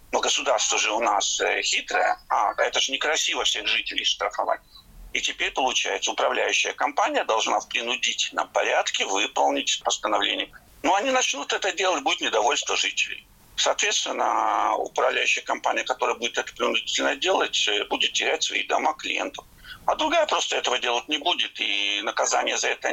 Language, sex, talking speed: Russian, male, 145 wpm